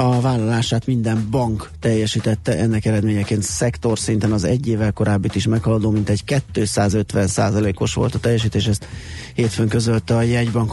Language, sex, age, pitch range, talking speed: Hungarian, male, 30-49, 105-115 Hz, 150 wpm